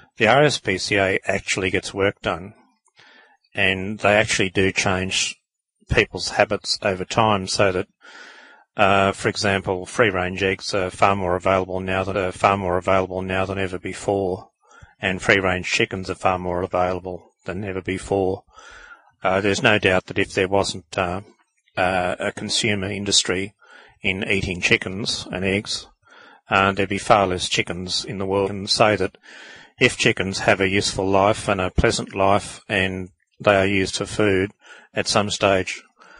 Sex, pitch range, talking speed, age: male, 95-105 Hz, 155 wpm, 40-59